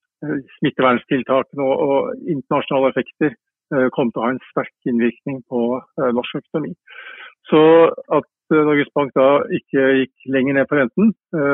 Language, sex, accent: English, male, Norwegian